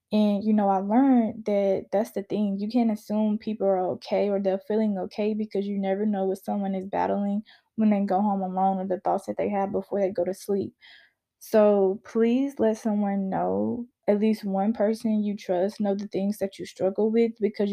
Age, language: 20-39, English